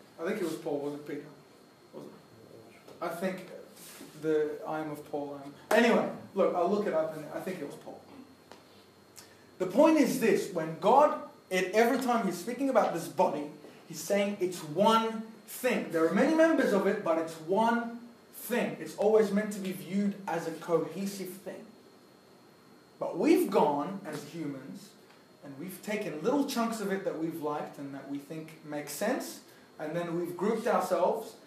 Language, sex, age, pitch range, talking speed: English, male, 30-49, 155-205 Hz, 180 wpm